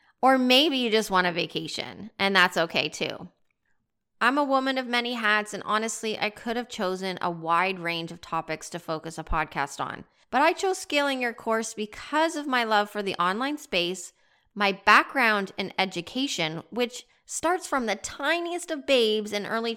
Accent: American